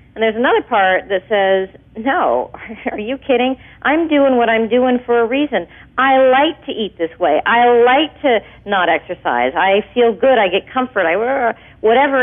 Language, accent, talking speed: English, American, 180 wpm